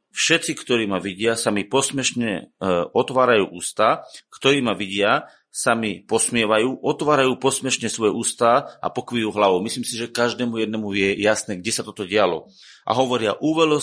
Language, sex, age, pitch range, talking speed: Slovak, male, 30-49, 105-130 Hz, 160 wpm